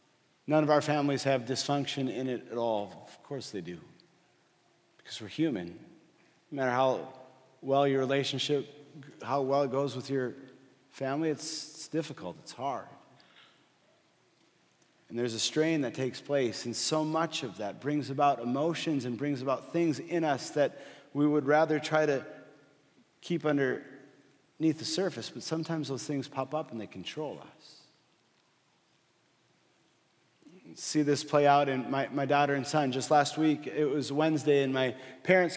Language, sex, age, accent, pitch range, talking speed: English, male, 40-59, American, 135-170 Hz, 160 wpm